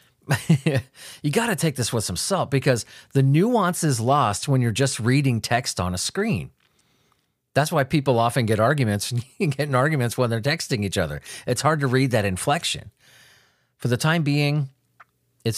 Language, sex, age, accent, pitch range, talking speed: English, male, 40-59, American, 115-145 Hz, 165 wpm